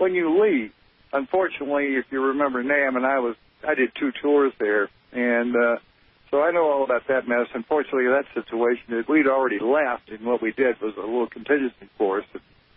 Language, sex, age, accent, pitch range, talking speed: English, male, 60-79, American, 110-135 Hz, 195 wpm